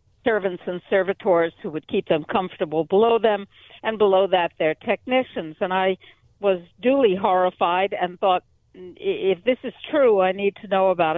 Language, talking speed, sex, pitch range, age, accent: English, 165 wpm, female, 165-200 Hz, 60-79, American